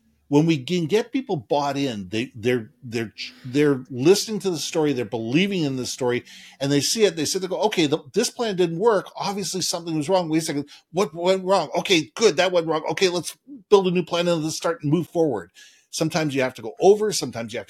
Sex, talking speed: male, 235 wpm